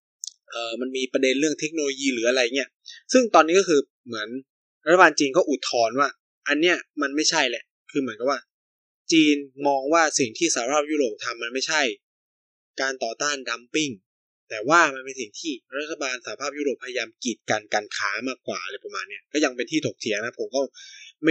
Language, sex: Thai, male